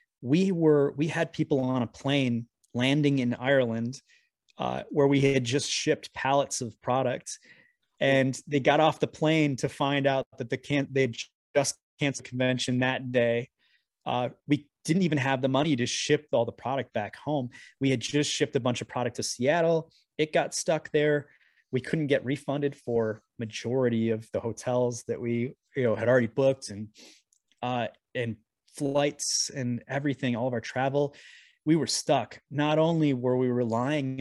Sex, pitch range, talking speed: male, 120-145 Hz, 175 wpm